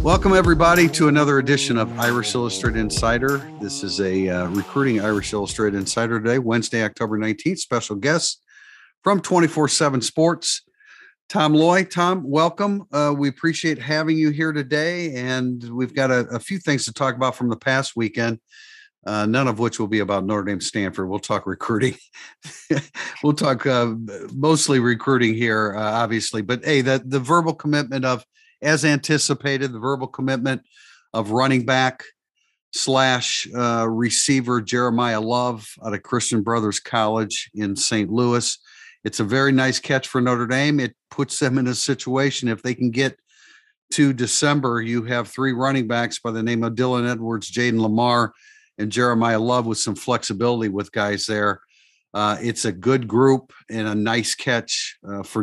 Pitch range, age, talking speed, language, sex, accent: 110-145 Hz, 50-69, 165 wpm, English, male, American